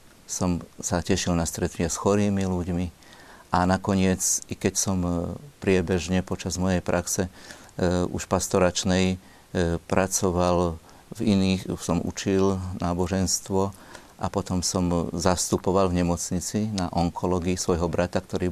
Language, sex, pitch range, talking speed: Slovak, male, 90-100 Hz, 125 wpm